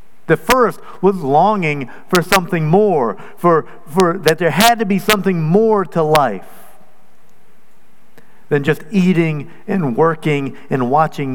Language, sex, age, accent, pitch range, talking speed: English, male, 50-69, American, 150-215 Hz, 130 wpm